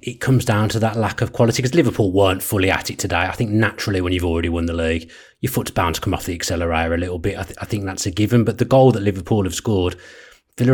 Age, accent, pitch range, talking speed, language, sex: 30-49, British, 95-120 Hz, 275 wpm, English, male